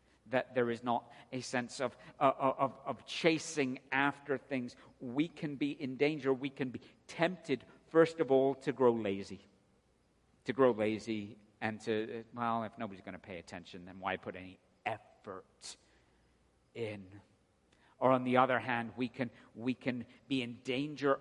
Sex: male